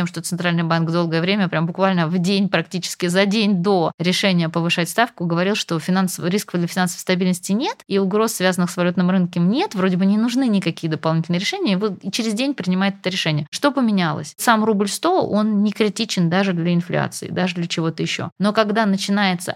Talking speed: 195 wpm